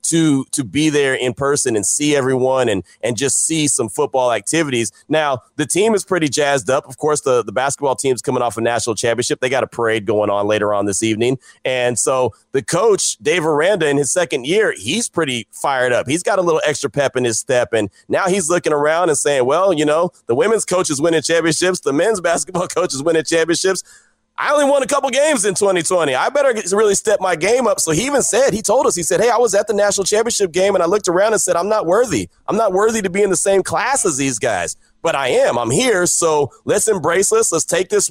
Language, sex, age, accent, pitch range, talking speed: English, male, 30-49, American, 140-195 Hz, 245 wpm